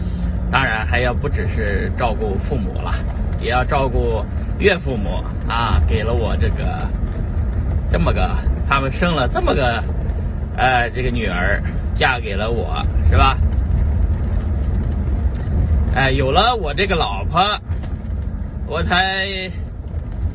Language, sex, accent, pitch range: Chinese, male, native, 80-95 Hz